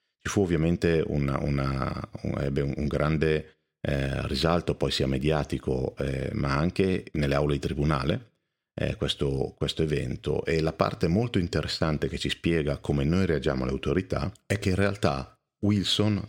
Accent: native